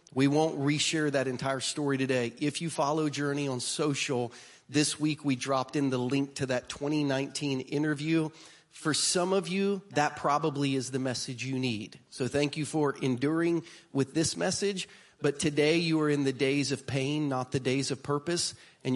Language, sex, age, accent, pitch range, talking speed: English, male, 30-49, American, 125-150 Hz, 185 wpm